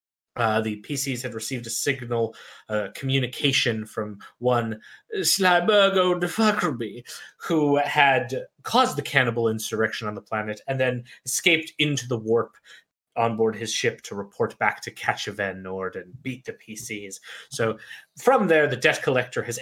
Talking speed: 150 wpm